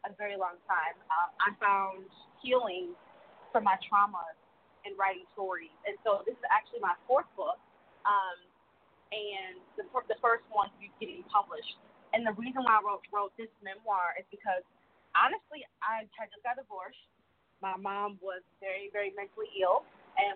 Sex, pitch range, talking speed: female, 195-230 Hz, 165 wpm